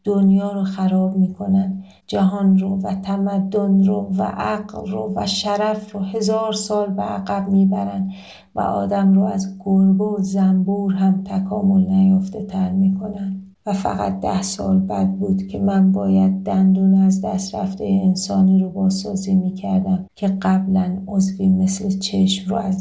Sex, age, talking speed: female, 40-59, 155 wpm